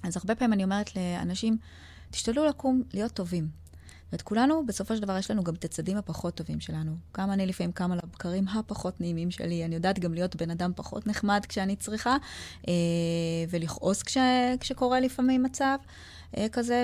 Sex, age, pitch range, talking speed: female, 20-39, 165-225 Hz, 170 wpm